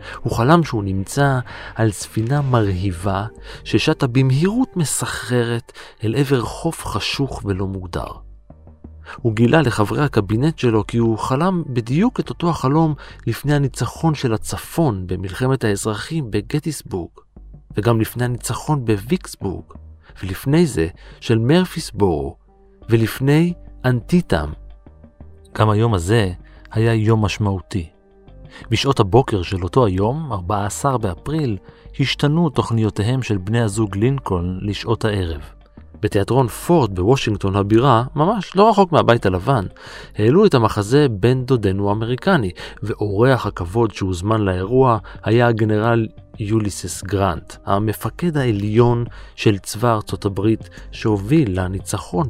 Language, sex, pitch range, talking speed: Hebrew, male, 100-135 Hz, 110 wpm